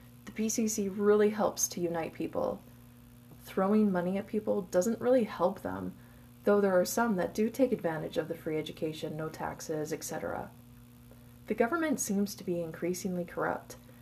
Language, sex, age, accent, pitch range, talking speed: English, female, 20-39, American, 120-200 Hz, 160 wpm